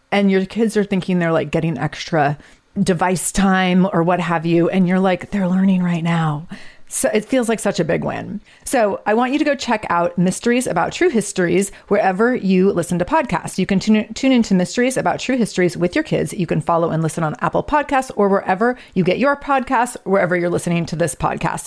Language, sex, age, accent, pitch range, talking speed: English, female, 30-49, American, 175-220 Hz, 215 wpm